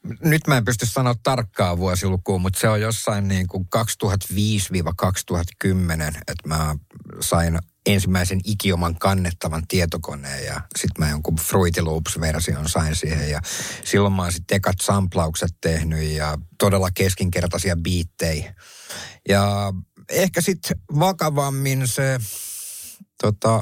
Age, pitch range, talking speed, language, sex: 50-69, 85-105 Hz, 115 wpm, Finnish, male